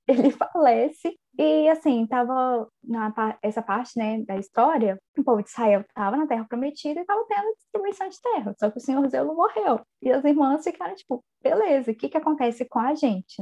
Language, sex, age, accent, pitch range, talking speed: Portuguese, female, 10-29, Brazilian, 225-295 Hz, 200 wpm